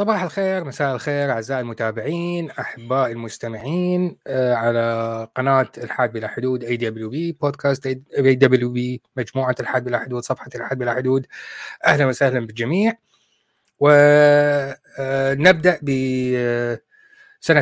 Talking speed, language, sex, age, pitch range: 110 wpm, Arabic, male, 20-39, 125-170 Hz